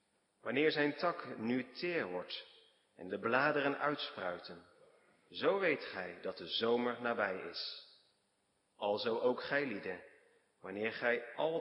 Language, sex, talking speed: Dutch, male, 130 wpm